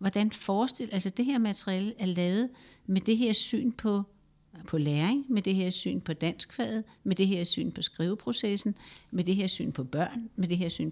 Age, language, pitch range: 60-79, Danish, 170-215 Hz